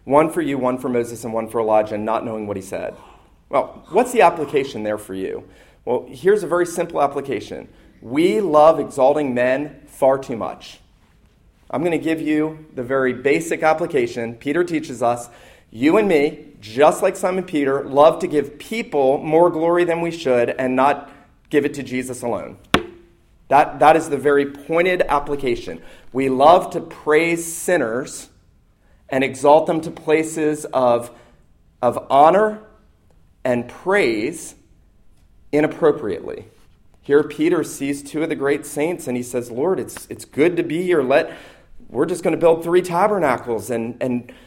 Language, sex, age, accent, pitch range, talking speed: English, male, 40-59, American, 125-180 Hz, 165 wpm